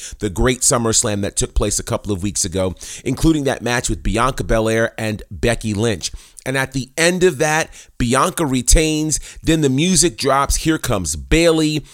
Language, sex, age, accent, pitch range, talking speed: English, male, 30-49, American, 110-150 Hz, 175 wpm